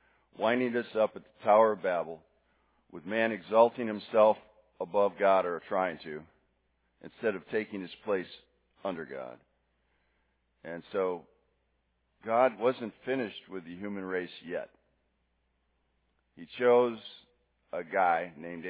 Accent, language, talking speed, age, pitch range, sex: American, English, 125 wpm, 50-69, 65-110 Hz, male